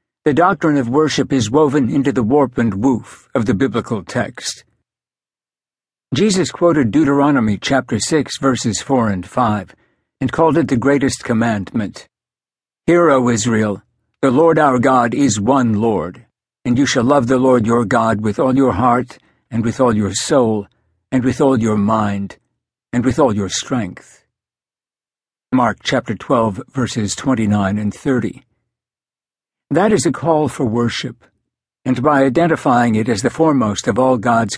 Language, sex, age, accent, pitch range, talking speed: English, male, 60-79, American, 110-140 Hz, 155 wpm